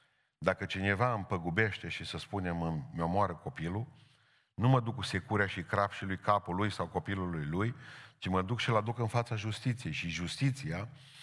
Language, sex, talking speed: Romanian, male, 170 wpm